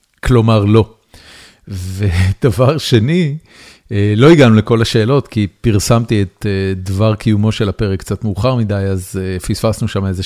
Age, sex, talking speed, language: 40-59, male, 130 wpm, Hebrew